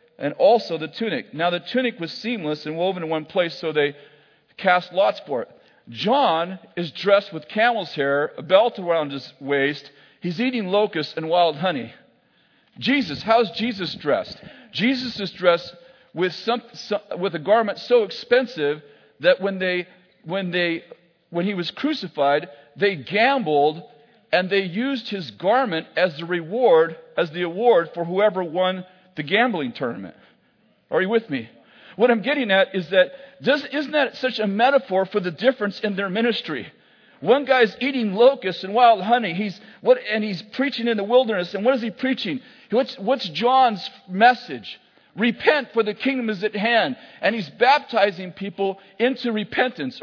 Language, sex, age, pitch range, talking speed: English, male, 40-59, 180-245 Hz, 165 wpm